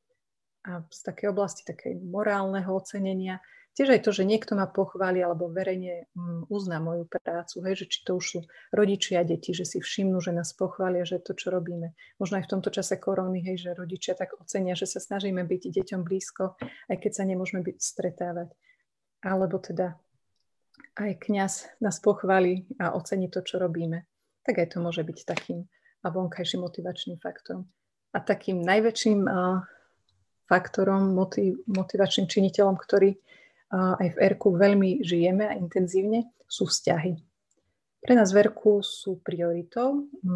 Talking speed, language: 155 wpm, Slovak